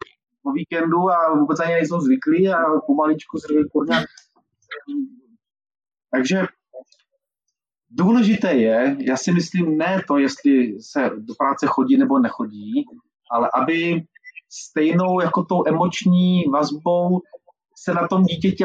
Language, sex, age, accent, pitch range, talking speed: Czech, male, 30-49, native, 140-235 Hz, 120 wpm